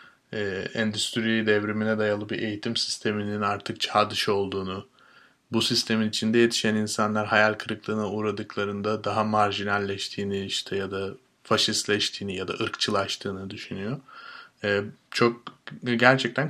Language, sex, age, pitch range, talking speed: Turkish, male, 30-49, 105-135 Hz, 115 wpm